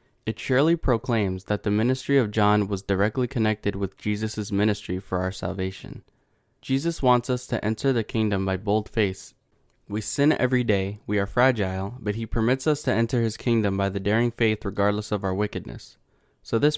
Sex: male